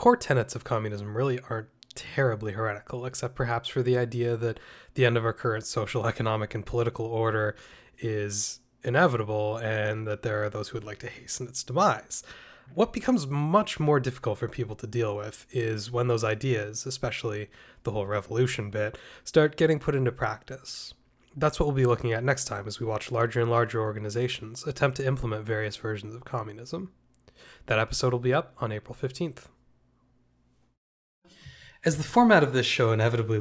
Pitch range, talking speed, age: 110-135 Hz, 180 wpm, 20-39